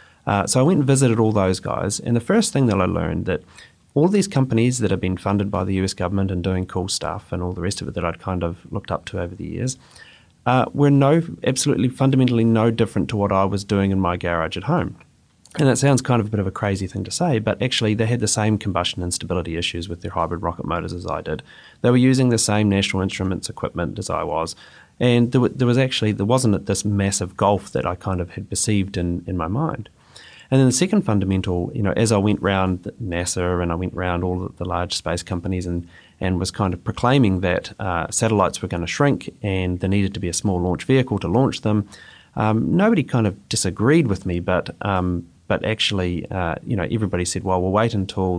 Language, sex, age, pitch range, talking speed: English, male, 30-49, 90-115 Hz, 240 wpm